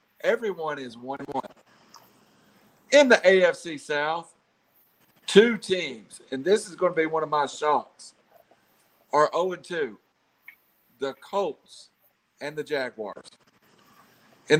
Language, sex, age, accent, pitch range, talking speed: English, male, 50-69, American, 140-195 Hz, 110 wpm